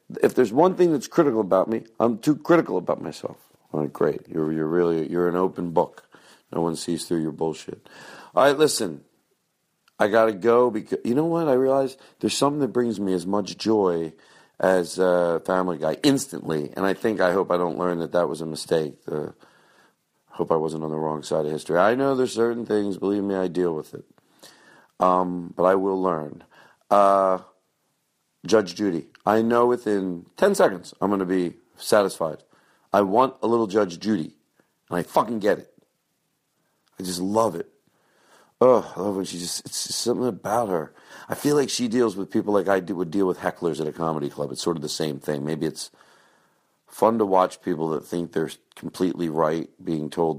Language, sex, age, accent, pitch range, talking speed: English, male, 50-69, American, 85-115 Hz, 205 wpm